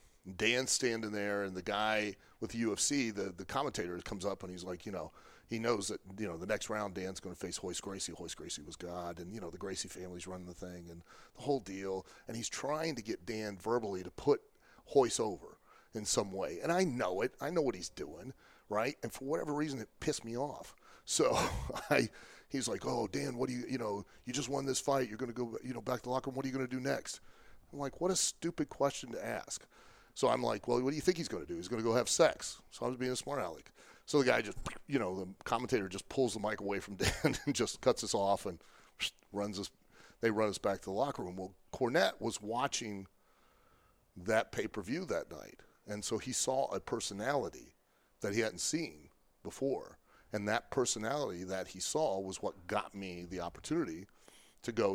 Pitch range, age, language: 95-125 Hz, 30-49, English